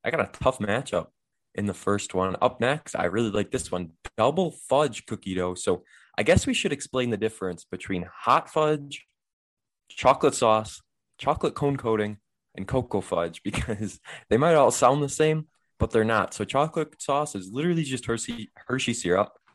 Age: 20-39